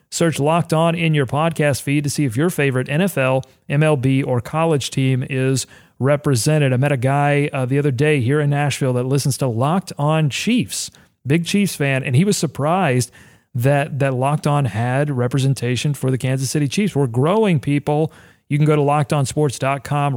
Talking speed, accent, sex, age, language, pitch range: 185 wpm, American, male, 40-59, English, 125-150 Hz